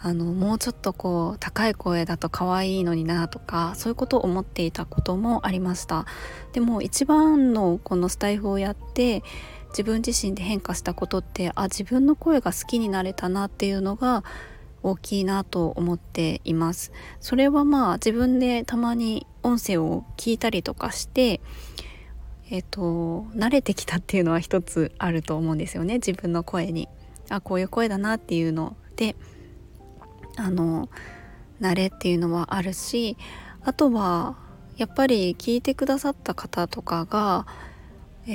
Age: 20-39